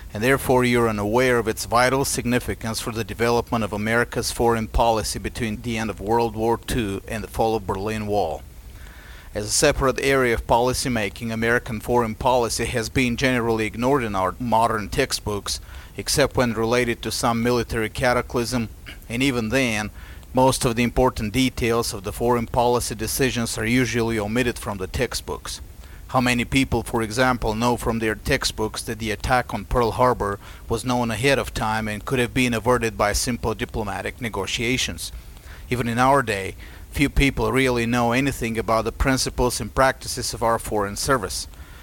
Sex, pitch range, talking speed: male, 105-125 Hz, 170 wpm